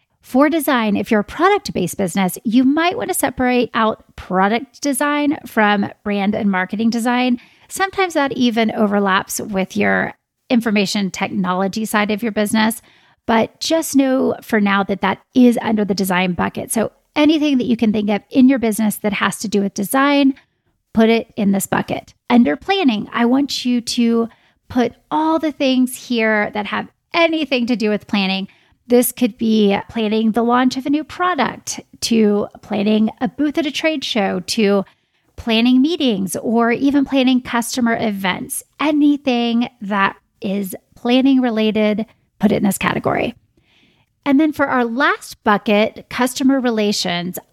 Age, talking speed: 30-49, 160 wpm